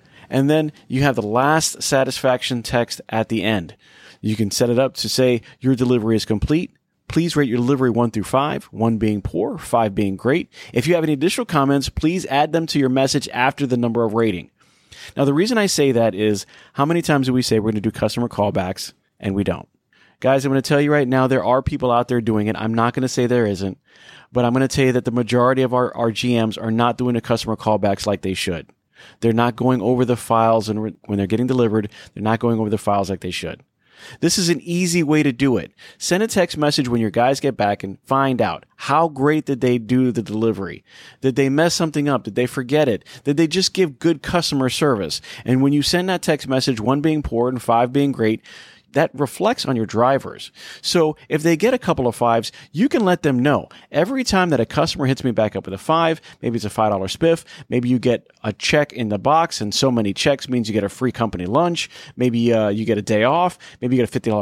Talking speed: 240 wpm